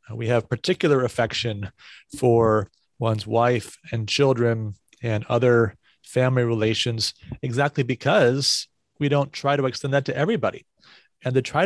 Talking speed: 135 wpm